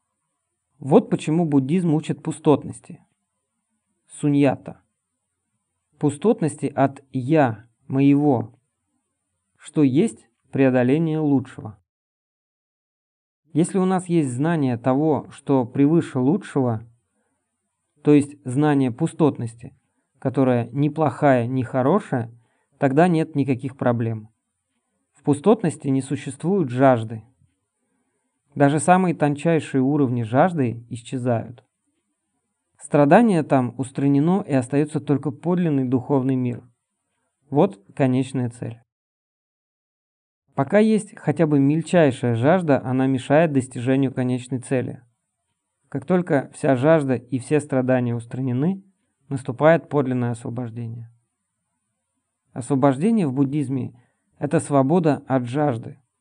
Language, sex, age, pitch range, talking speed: Russian, male, 40-59, 125-150 Hz, 95 wpm